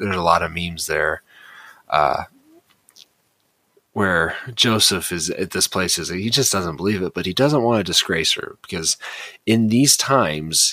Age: 30-49